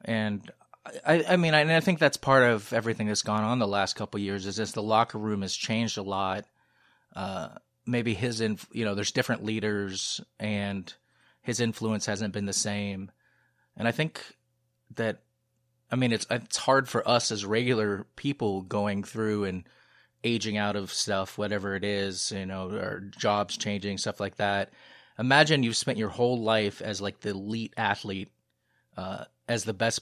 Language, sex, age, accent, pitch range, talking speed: English, male, 30-49, American, 100-115 Hz, 180 wpm